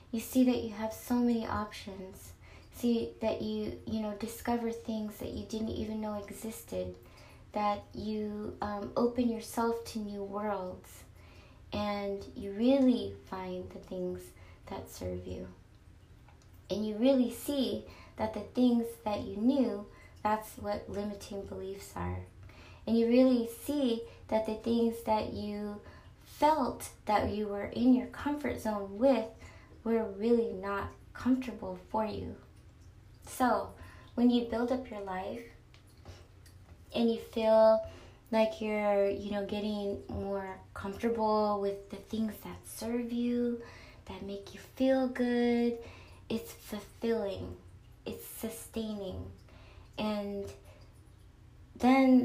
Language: English